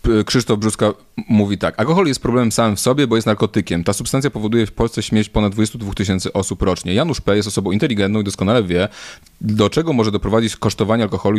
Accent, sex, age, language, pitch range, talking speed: native, male, 30-49, Polish, 100-120 Hz, 200 wpm